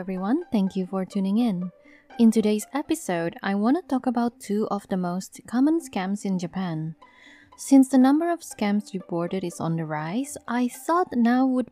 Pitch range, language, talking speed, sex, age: 180-250 Hz, English, 185 wpm, female, 20-39